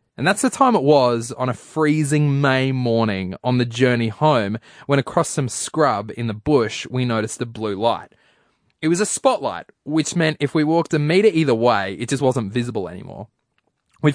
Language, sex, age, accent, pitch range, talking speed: English, male, 20-39, Australian, 120-160 Hz, 195 wpm